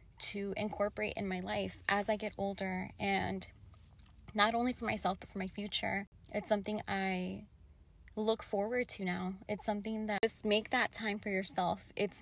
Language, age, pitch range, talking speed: English, 20-39, 190-215 Hz, 170 wpm